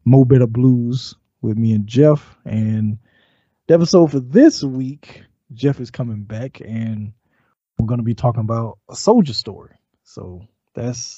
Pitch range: 110-150 Hz